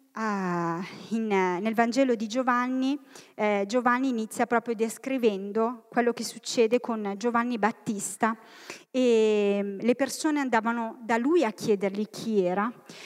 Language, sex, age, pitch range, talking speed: Italian, female, 30-49, 205-265 Hz, 125 wpm